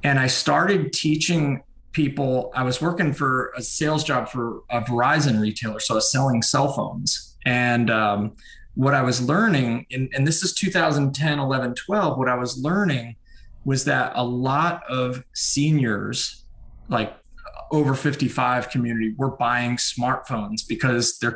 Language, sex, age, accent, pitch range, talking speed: English, male, 20-39, American, 125-155 Hz, 150 wpm